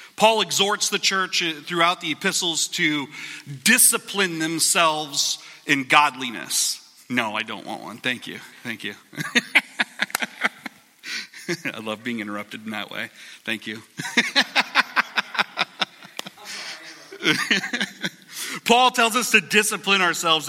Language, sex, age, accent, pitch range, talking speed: English, male, 40-59, American, 150-195 Hz, 105 wpm